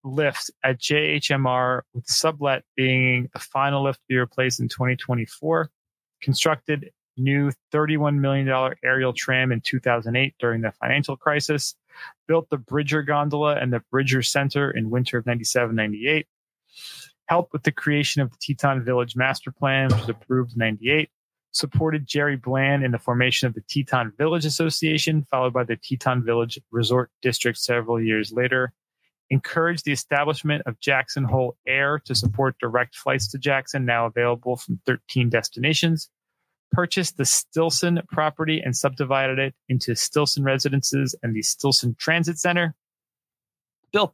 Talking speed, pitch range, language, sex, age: 150 wpm, 125-145 Hz, English, male, 30-49